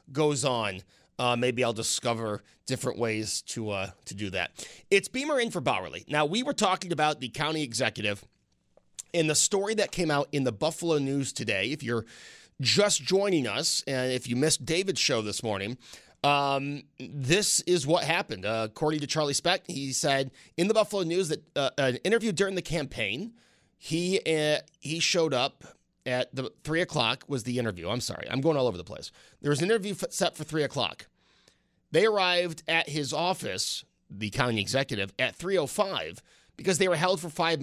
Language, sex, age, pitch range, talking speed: English, male, 30-49, 125-175 Hz, 185 wpm